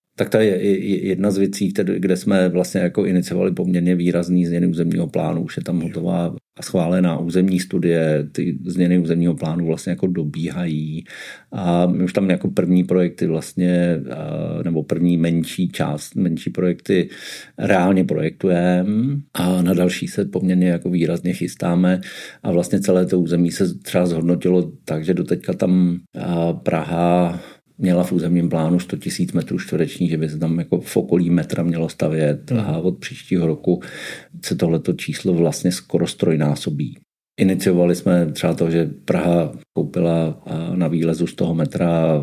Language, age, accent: Czech, 50-69, native